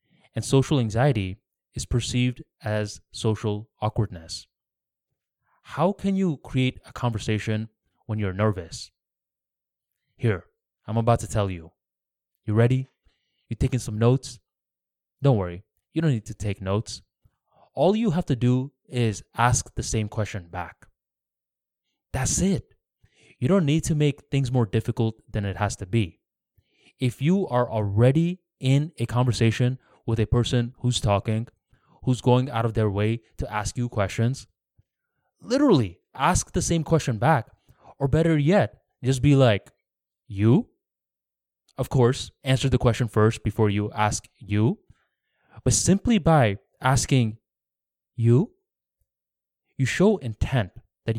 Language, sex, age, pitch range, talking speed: English, male, 20-39, 105-130 Hz, 135 wpm